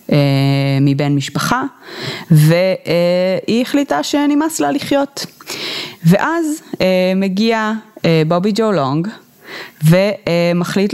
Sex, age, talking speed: female, 20-39, 70 wpm